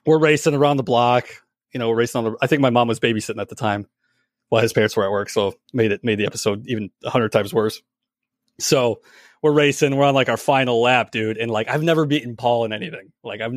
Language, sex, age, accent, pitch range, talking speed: English, male, 30-49, American, 130-170 Hz, 250 wpm